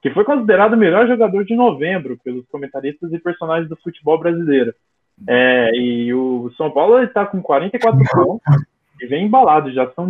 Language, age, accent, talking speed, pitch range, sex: Portuguese, 20-39, Brazilian, 165 wpm, 140-195 Hz, male